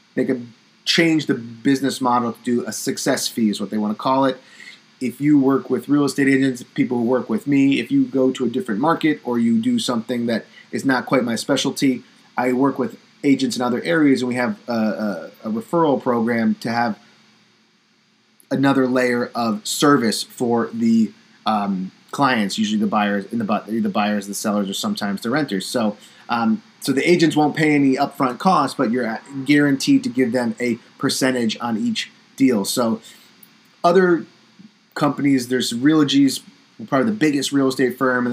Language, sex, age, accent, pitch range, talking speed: English, male, 30-49, American, 120-150 Hz, 180 wpm